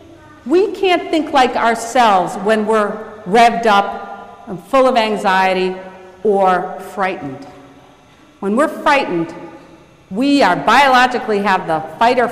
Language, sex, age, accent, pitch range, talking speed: English, female, 50-69, American, 190-250 Hz, 120 wpm